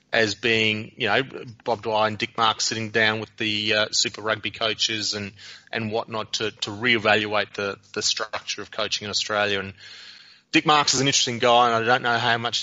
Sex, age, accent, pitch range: male, 20-39, Australian, 105-120 Hz